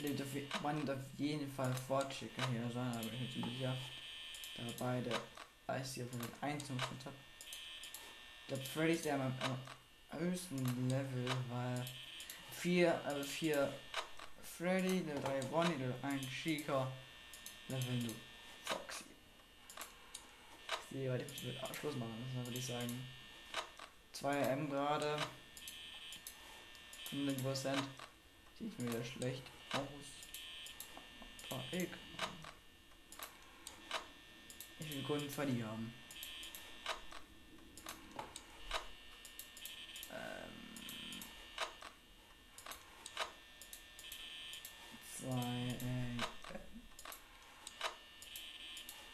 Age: 20-39